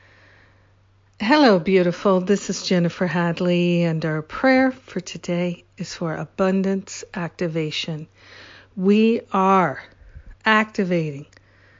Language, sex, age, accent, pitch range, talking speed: English, female, 50-69, American, 170-195 Hz, 90 wpm